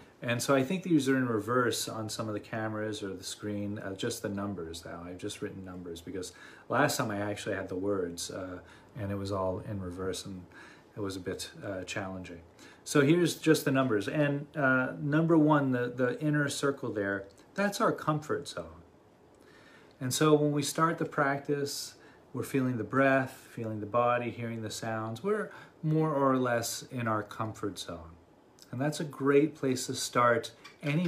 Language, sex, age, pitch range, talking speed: English, male, 30-49, 100-140 Hz, 190 wpm